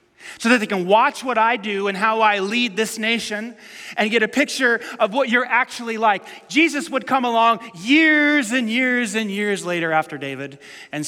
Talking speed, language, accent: 195 wpm, English, American